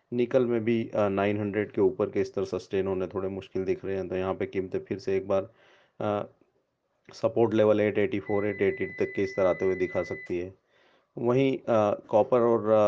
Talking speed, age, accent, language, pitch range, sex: 185 wpm, 30-49, Indian, English, 95-105 Hz, male